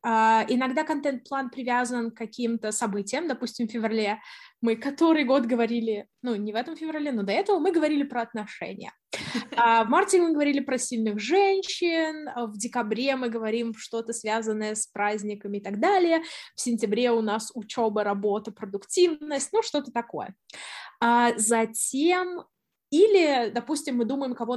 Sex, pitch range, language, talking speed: female, 220-295 Hz, Russian, 145 wpm